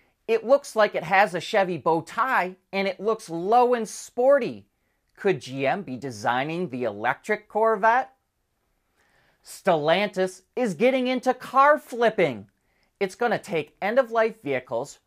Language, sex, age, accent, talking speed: English, male, 30-49, American, 135 wpm